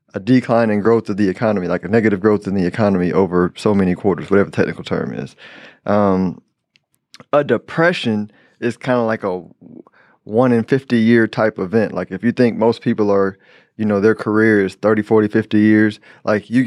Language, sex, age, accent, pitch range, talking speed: English, male, 20-39, American, 100-115 Hz, 200 wpm